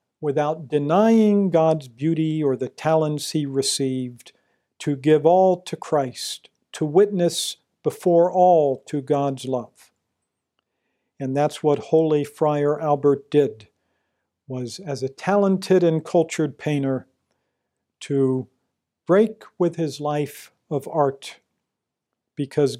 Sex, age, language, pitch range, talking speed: male, 50-69, English, 140-175 Hz, 115 wpm